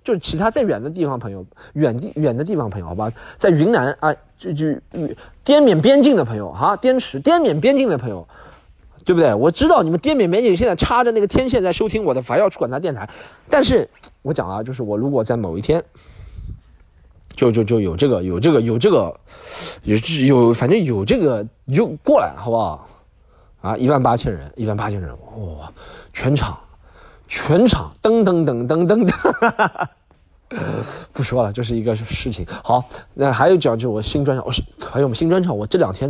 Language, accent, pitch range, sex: Chinese, native, 100-150 Hz, male